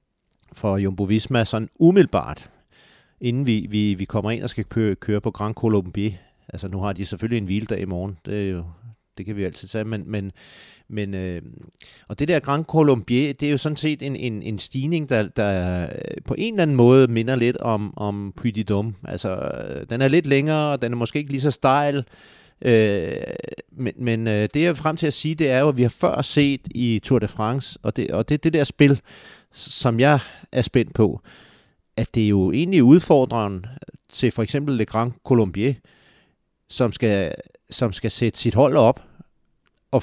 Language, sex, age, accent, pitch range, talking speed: Danish, male, 30-49, native, 105-135 Hz, 200 wpm